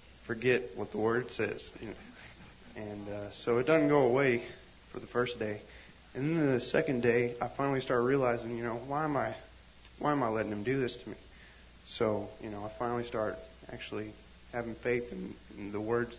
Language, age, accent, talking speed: English, 20-39, American, 195 wpm